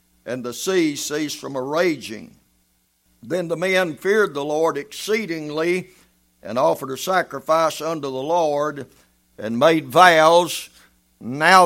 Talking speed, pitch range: 130 wpm, 135-175 Hz